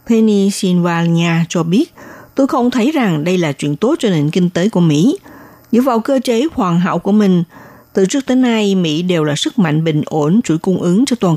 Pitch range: 165-230 Hz